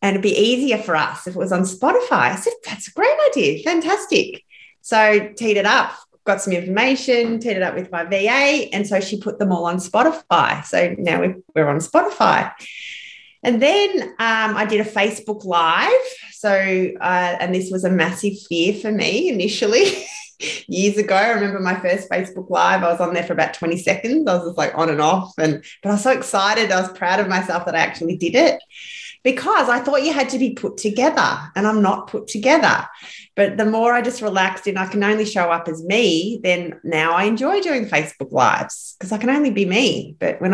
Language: English